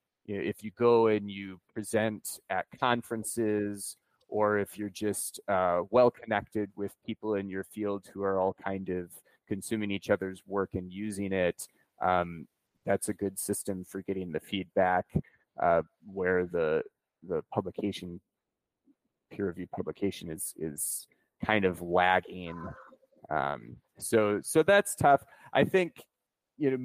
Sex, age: male, 30-49